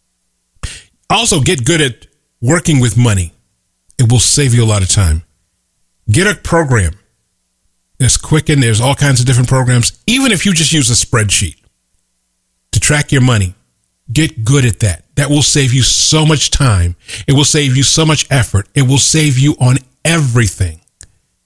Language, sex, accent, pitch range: English, male, American, 100-145 Hz